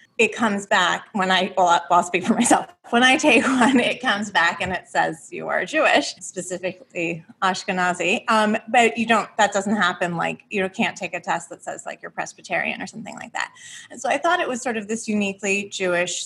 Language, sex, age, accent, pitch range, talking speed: English, female, 30-49, American, 185-230 Hz, 215 wpm